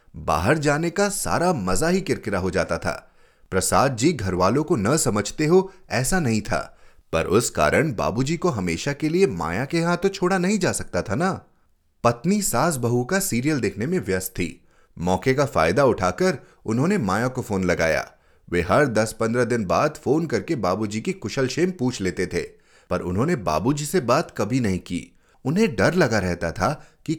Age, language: 30-49, Hindi